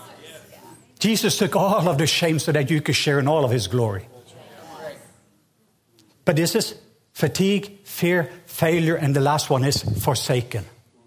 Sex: male